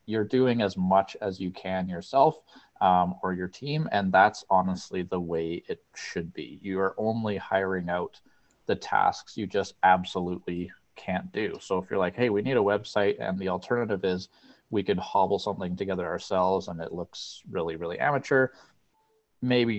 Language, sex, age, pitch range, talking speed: English, male, 30-49, 90-105 Hz, 175 wpm